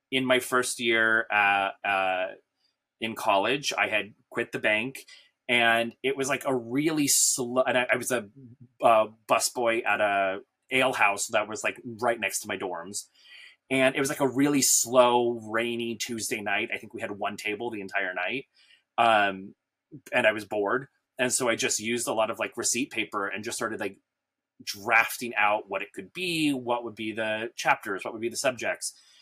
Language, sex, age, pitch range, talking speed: English, male, 30-49, 110-130 Hz, 195 wpm